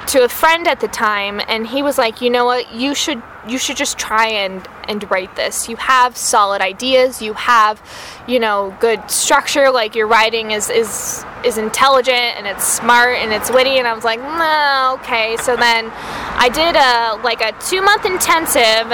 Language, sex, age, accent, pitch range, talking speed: English, female, 10-29, American, 215-260 Hz, 195 wpm